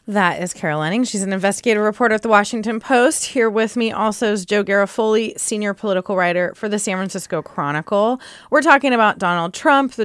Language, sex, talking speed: English, female, 195 wpm